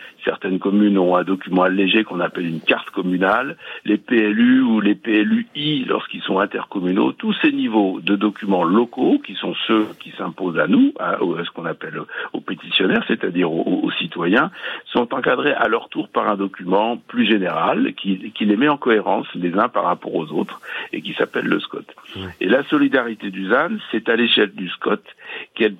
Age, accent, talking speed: 60-79, French, 190 wpm